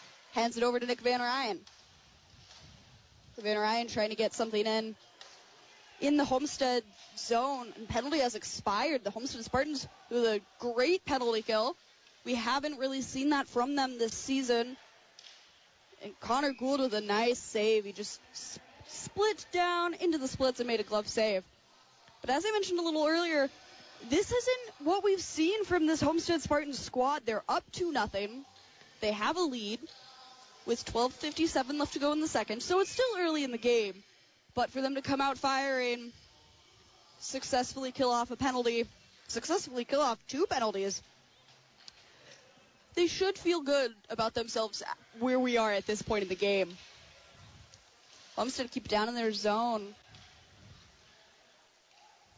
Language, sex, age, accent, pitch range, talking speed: English, female, 20-39, American, 220-290 Hz, 155 wpm